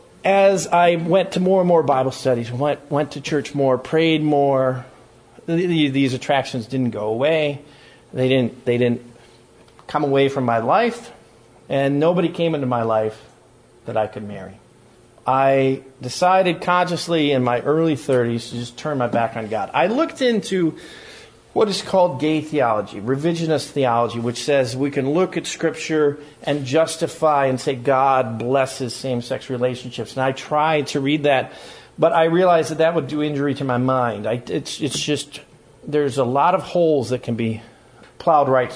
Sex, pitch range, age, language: male, 125-160 Hz, 40-59, English